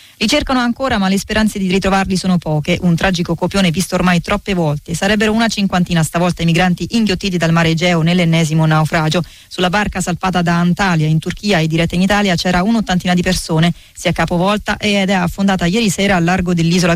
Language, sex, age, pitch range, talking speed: Italian, female, 20-39, 170-200 Hz, 195 wpm